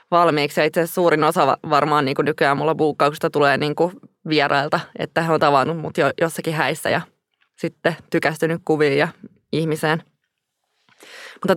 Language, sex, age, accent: Finnish, female, 20-39, native